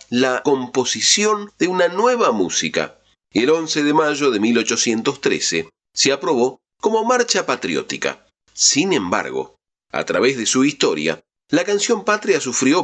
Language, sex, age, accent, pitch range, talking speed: Spanish, male, 40-59, Argentinian, 120-195 Hz, 135 wpm